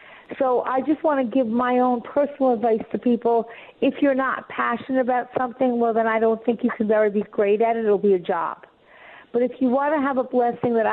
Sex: female